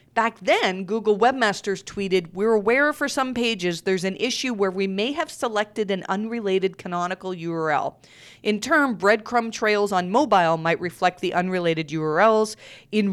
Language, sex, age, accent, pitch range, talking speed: English, female, 40-59, American, 175-225 Hz, 155 wpm